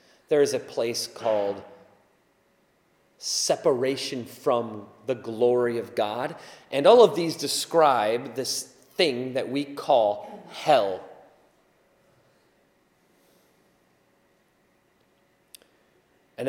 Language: English